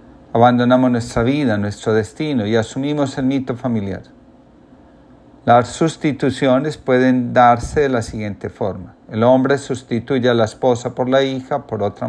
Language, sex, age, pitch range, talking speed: Spanish, male, 40-59, 115-135 Hz, 145 wpm